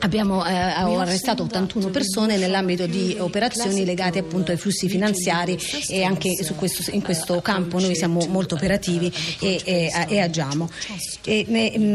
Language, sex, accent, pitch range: Italian, female, native, 180-215 Hz